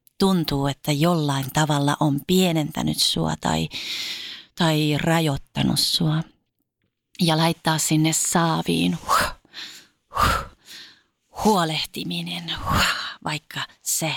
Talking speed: 90 wpm